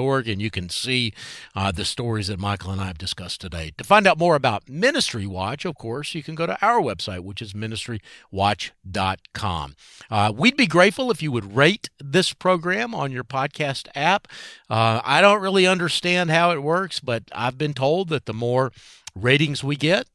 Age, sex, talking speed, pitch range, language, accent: 50-69, male, 190 wpm, 110-160 Hz, English, American